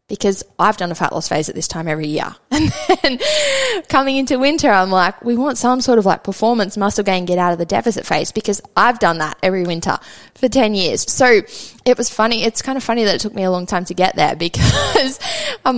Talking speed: 240 wpm